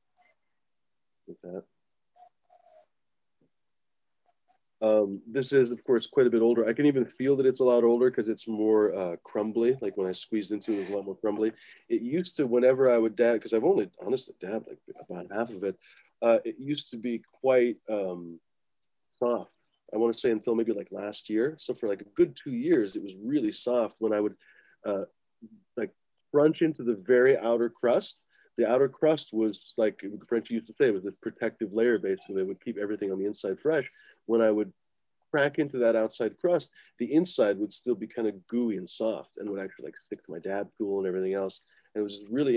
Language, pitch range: English, 105-135 Hz